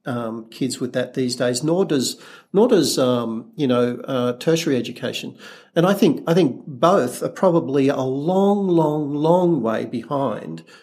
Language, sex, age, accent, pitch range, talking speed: English, male, 50-69, Australian, 125-160 Hz, 165 wpm